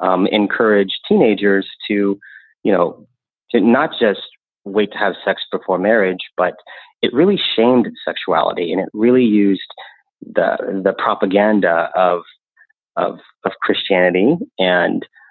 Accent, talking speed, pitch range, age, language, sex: American, 120 wpm, 95-110 Hz, 30-49, English, male